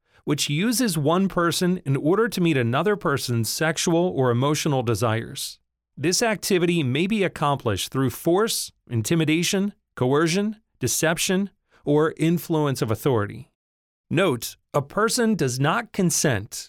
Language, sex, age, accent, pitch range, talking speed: English, male, 40-59, American, 125-180 Hz, 120 wpm